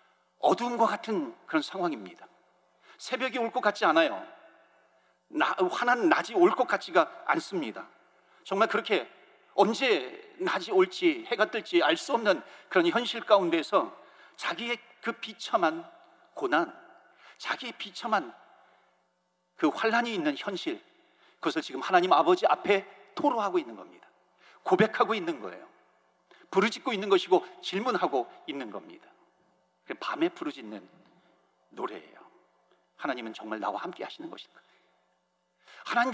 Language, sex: Korean, male